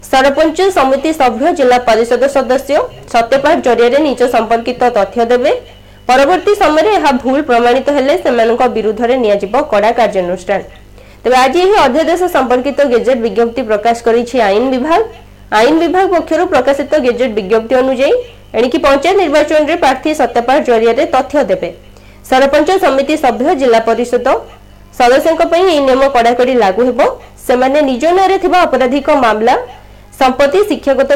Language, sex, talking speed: Hindi, female, 65 wpm